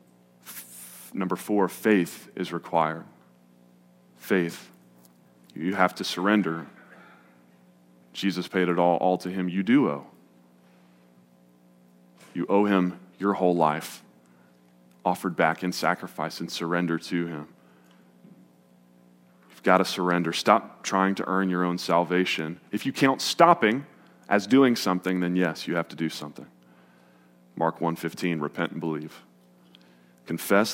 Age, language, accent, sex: 30-49, English, American, male